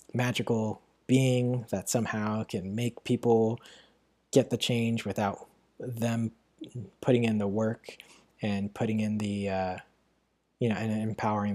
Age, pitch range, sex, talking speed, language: 20-39, 105-120 Hz, male, 130 wpm, English